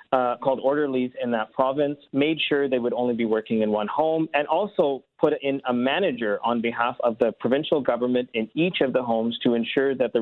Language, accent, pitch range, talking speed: English, American, 120-155 Hz, 215 wpm